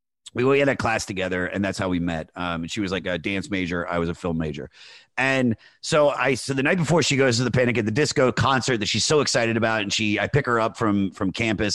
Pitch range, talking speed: 90-125 Hz, 275 wpm